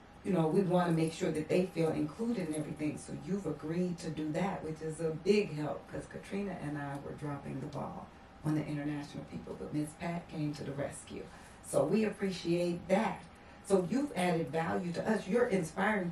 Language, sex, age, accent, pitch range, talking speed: English, female, 40-59, American, 155-195 Hz, 205 wpm